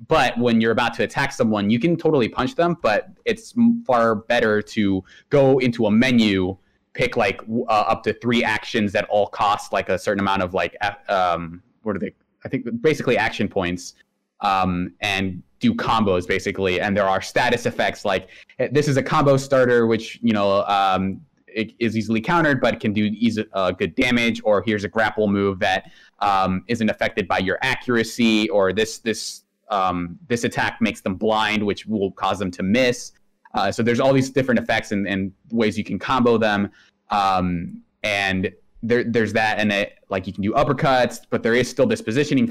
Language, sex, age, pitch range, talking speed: English, male, 20-39, 100-120 Hz, 190 wpm